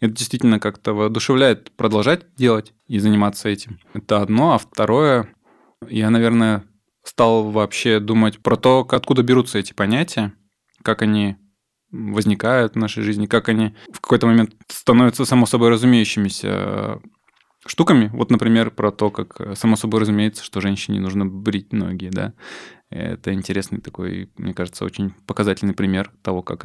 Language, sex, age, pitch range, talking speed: Russian, male, 20-39, 100-120 Hz, 140 wpm